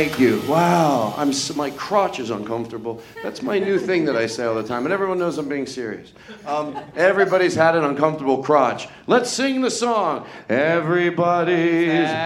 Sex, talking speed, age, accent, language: male, 175 wpm, 40-59, American, English